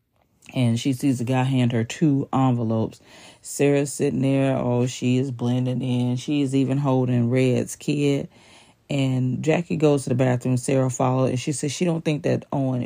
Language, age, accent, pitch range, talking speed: English, 40-59, American, 120-140 Hz, 180 wpm